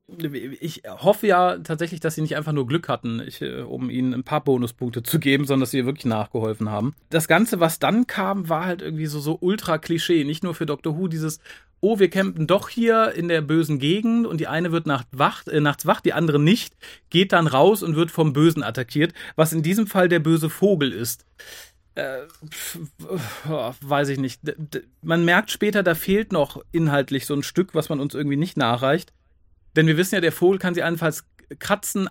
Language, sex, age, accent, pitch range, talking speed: German, male, 40-59, German, 140-175 Hz, 210 wpm